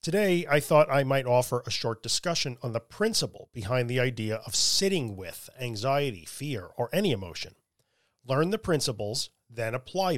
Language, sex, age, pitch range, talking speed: English, male, 40-59, 115-155 Hz, 165 wpm